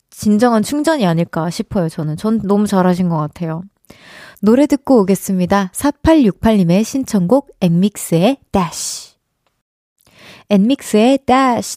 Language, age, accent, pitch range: Korean, 20-39, native, 200-280 Hz